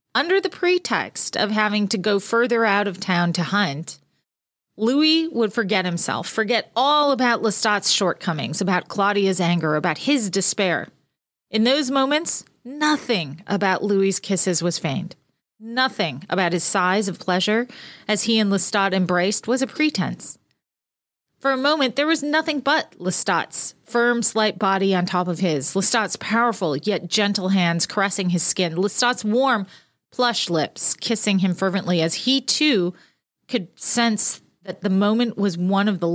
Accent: American